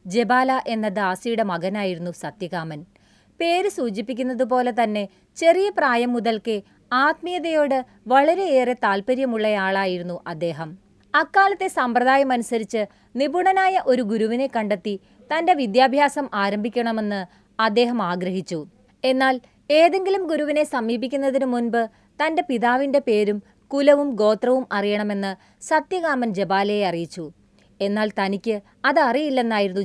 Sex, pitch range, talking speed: female, 195-275 Hz, 85 wpm